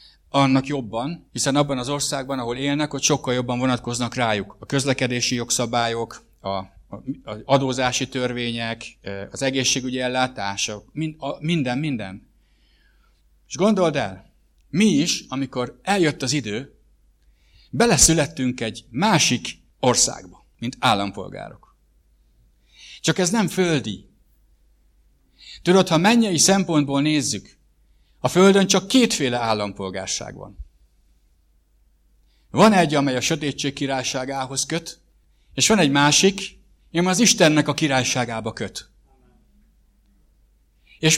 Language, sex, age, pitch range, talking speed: English, male, 60-79, 100-160 Hz, 105 wpm